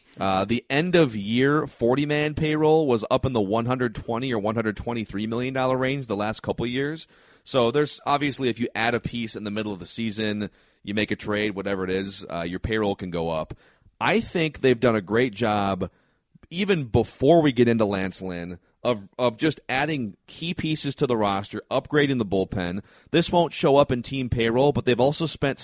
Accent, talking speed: American, 195 wpm